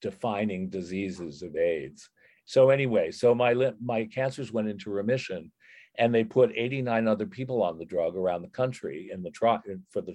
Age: 50-69